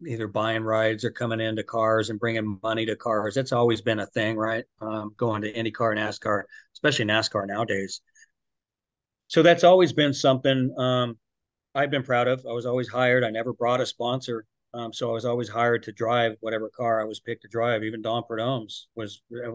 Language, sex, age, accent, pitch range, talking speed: English, male, 40-59, American, 110-125 Hz, 205 wpm